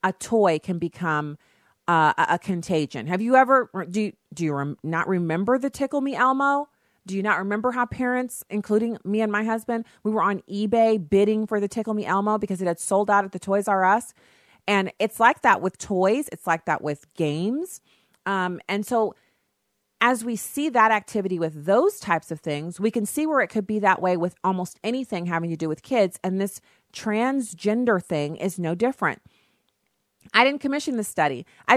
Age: 30-49